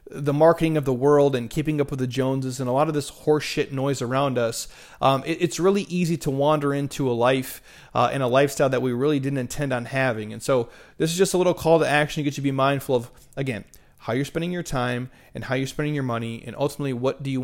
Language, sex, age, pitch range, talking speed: English, male, 30-49, 130-160 Hz, 255 wpm